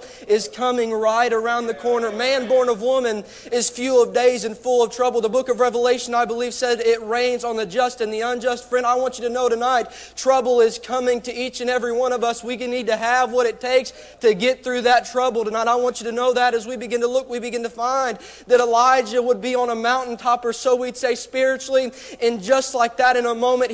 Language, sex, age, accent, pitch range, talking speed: English, male, 30-49, American, 245-270 Hz, 245 wpm